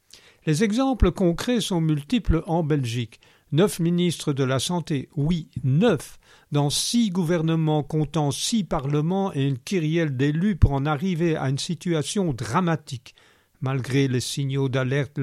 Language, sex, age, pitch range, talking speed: French, male, 50-69, 130-160 Hz, 140 wpm